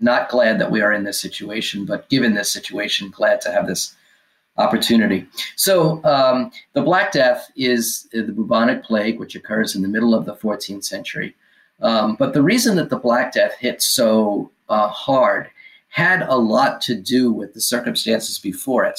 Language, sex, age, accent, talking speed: English, male, 50-69, American, 180 wpm